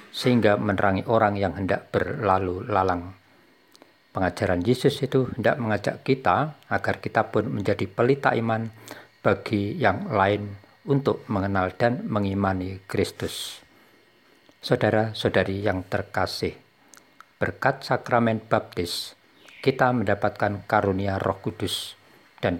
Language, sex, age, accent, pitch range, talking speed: Indonesian, male, 50-69, native, 95-120 Hz, 100 wpm